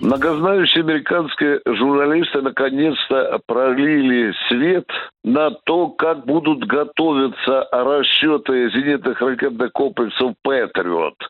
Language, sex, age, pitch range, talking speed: Russian, male, 60-79, 145-210 Hz, 85 wpm